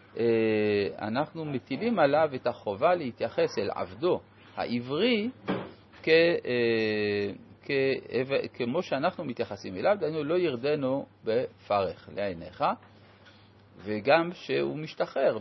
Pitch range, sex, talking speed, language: 105-155 Hz, male, 90 wpm, Hebrew